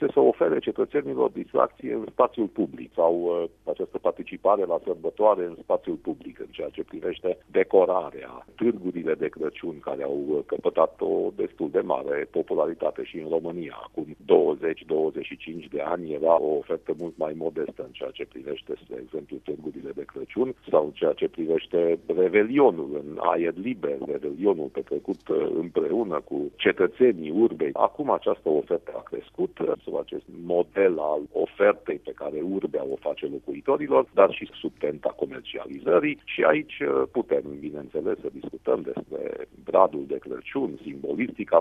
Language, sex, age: Romanian, male, 50-69